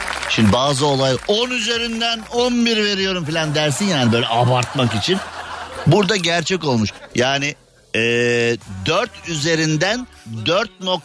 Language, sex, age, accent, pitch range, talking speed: Turkish, male, 50-69, native, 115-160 Hz, 110 wpm